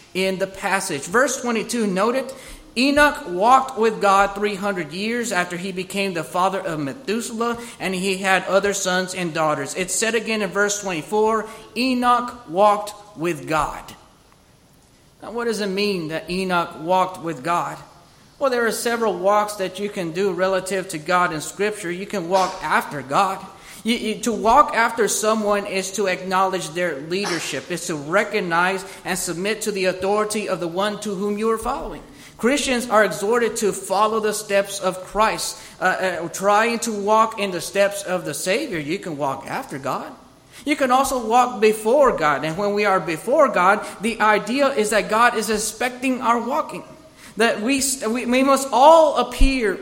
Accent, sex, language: American, male, English